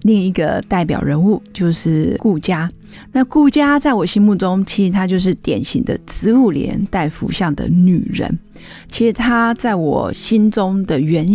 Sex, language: female, Chinese